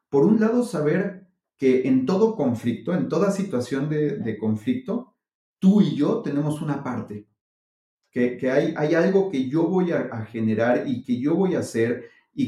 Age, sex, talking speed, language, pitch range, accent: 40-59, male, 185 wpm, Spanish, 120-160 Hz, Mexican